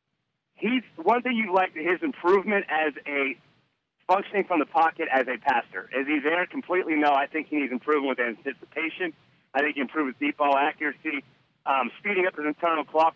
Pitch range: 150-190 Hz